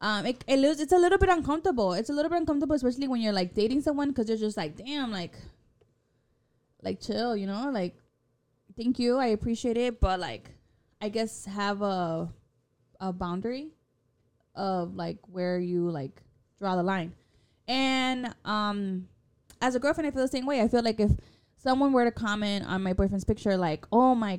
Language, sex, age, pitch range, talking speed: English, female, 20-39, 190-255 Hz, 185 wpm